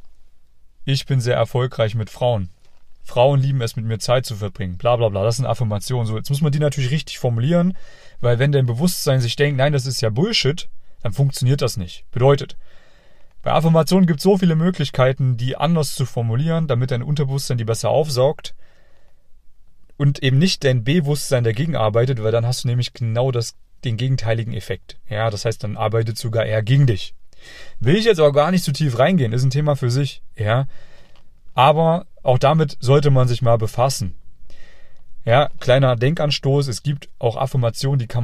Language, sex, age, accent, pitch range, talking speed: German, male, 30-49, German, 115-140 Hz, 180 wpm